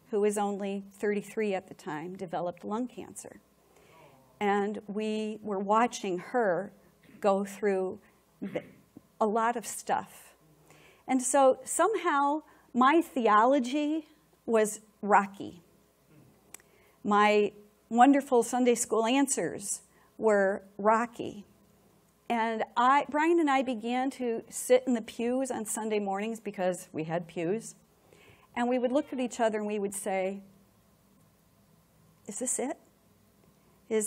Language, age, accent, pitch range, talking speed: English, 50-69, American, 200-245 Hz, 120 wpm